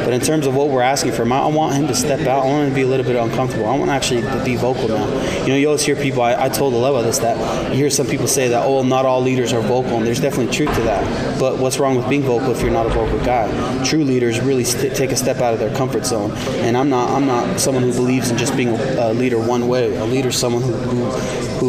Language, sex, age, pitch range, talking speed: English, male, 20-39, 120-135 Hz, 295 wpm